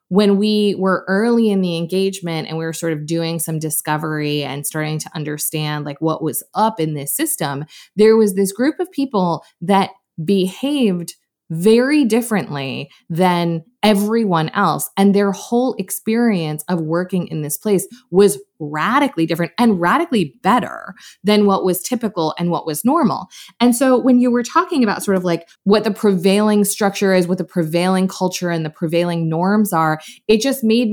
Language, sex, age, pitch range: English, female, 20-39, 165-210 Hz